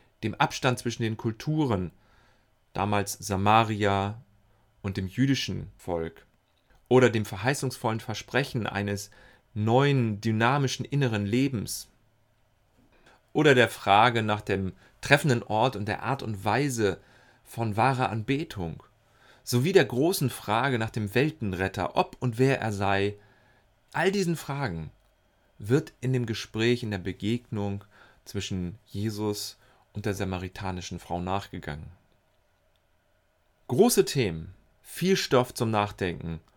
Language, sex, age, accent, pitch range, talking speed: German, male, 30-49, German, 100-130 Hz, 115 wpm